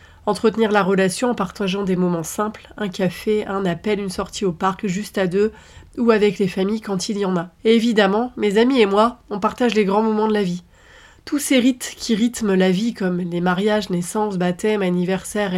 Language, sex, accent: French, female, French